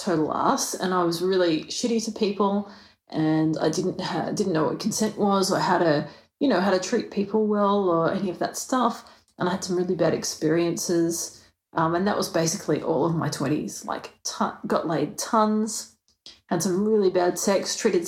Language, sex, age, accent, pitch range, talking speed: English, female, 30-49, Australian, 180-220 Hz, 200 wpm